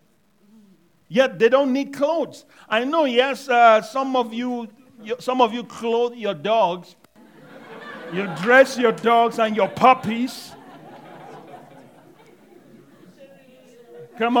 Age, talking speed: 50-69, 115 wpm